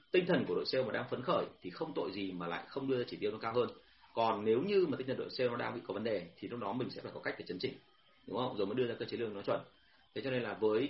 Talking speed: 350 wpm